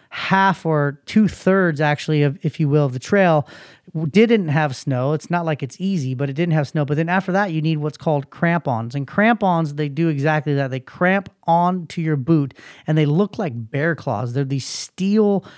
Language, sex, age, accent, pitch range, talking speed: English, male, 30-49, American, 145-180 Hz, 205 wpm